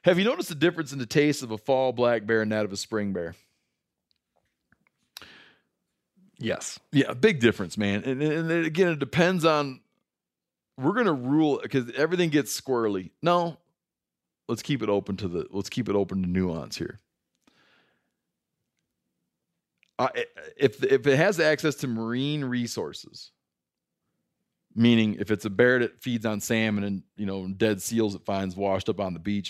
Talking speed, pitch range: 170 wpm, 100-140 Hz